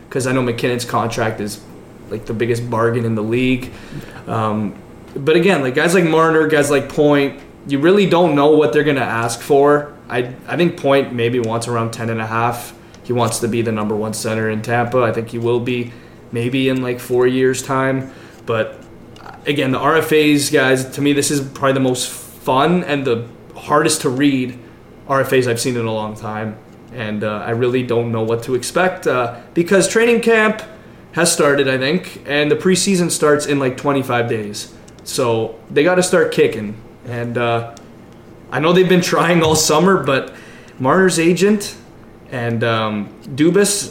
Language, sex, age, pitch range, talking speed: English, male, 20-39, 115-155 Hz, 185 wpm